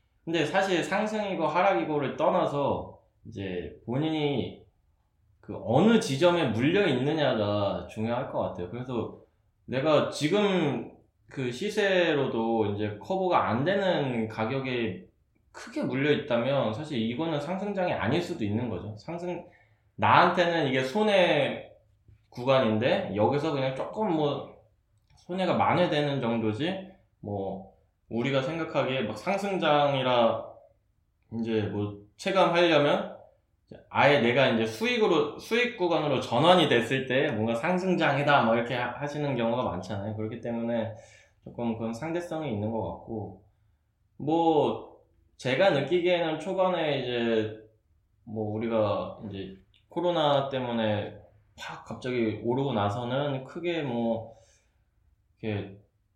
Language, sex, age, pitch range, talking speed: English, male, 20-39, 105-160 Hz, 105 wpm